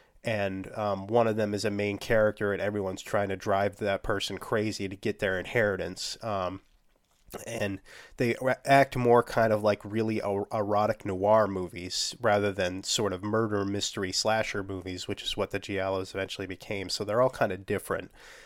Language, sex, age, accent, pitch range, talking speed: English, male, 30-49, American, 95-110 Hz, 180 wpm